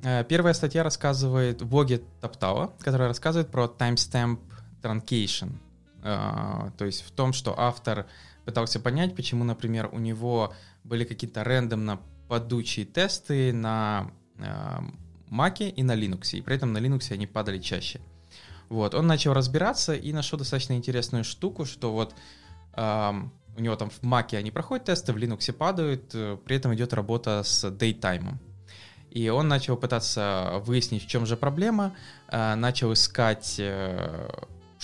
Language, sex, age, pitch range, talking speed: English, male, 20-39, 100-125 Hz, 145 wpm